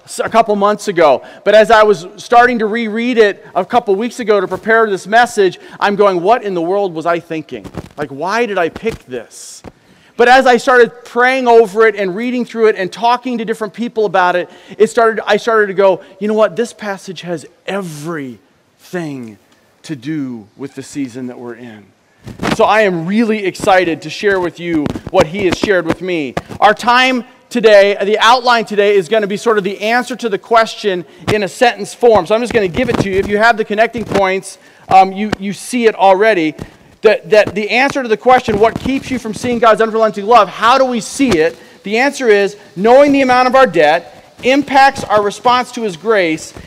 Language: English